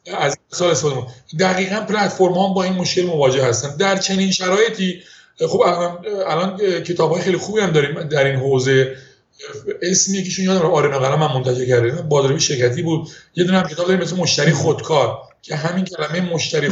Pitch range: 140-185 Hz